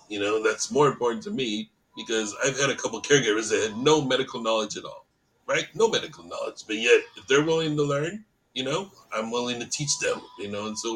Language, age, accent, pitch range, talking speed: English, 40-59, American, 105-140 Hz, 240 wpm